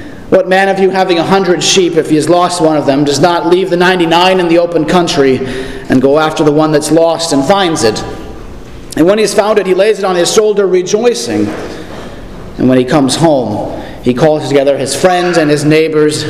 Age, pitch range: 40-59, 155-200 Hz